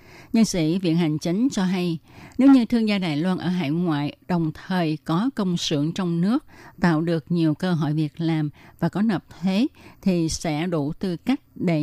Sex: female